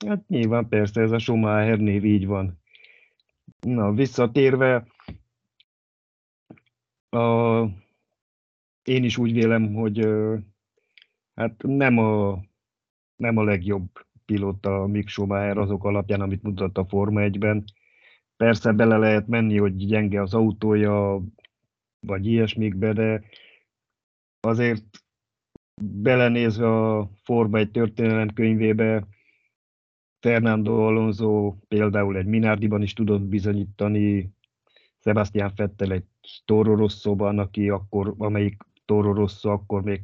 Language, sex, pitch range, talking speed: Hungarian, male, 100-115 Hz, 105 wpm